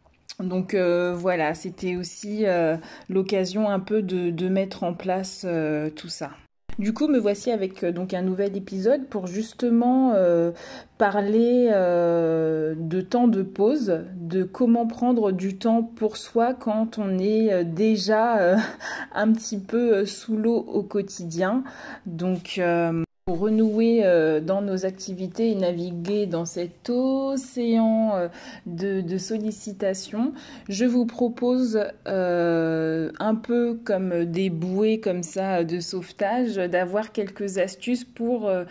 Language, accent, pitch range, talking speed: French, French, 180-220 Hz, 135 wpm